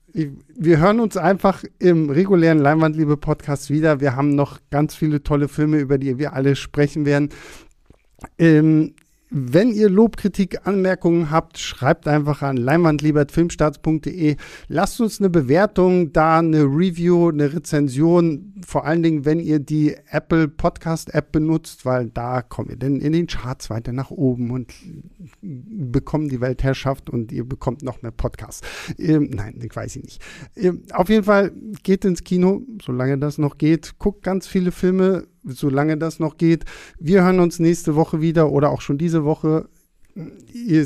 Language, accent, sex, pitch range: German, German, male, 145-180 Hz